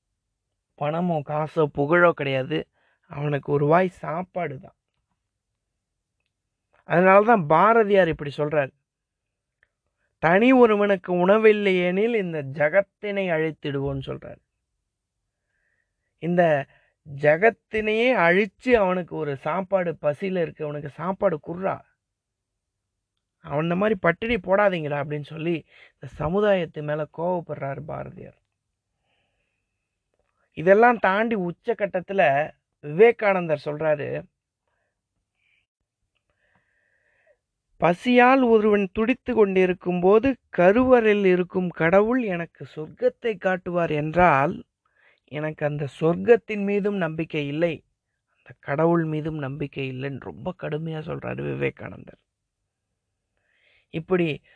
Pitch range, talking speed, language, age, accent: 145-195 Hz, 80 wpm, Tamil, 30-49, native